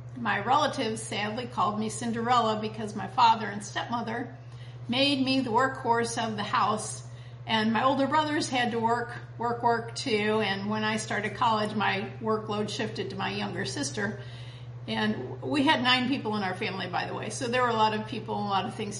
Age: 50-69